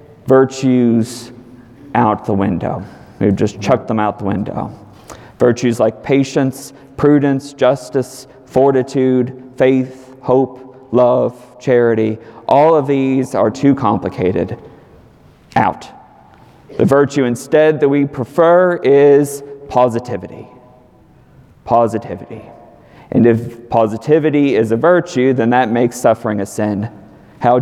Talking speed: 110 wpm